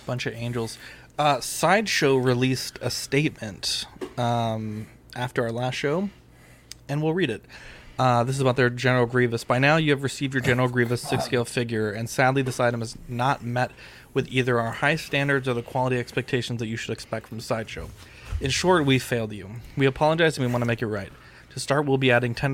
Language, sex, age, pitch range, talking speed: English, male, 20-39, 120-135 Hz, 205 wpm